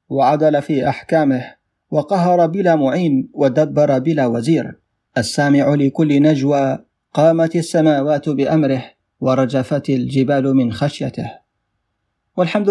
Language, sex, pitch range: Arabic, male, 135-170 Hz